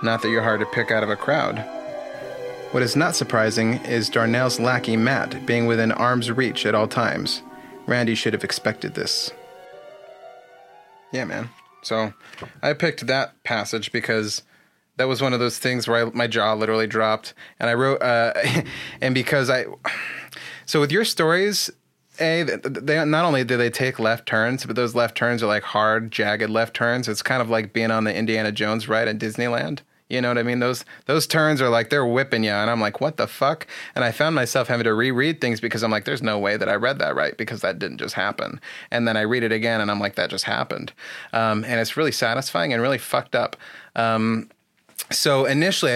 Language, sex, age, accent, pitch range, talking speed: English, male, 30-49, American, 115-135 Hz, 210 wpm